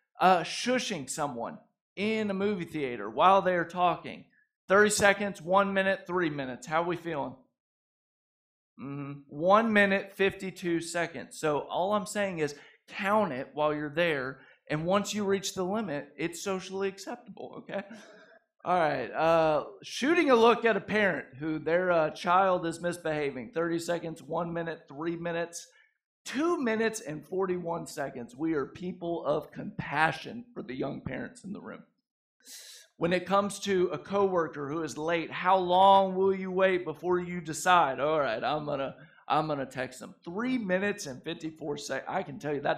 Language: English